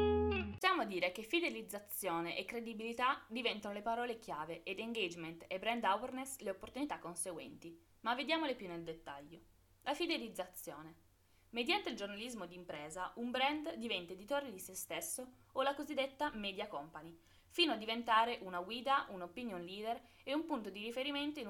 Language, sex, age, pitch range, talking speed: Italian, female, 20-39, 175-255 Hz, 155 wpm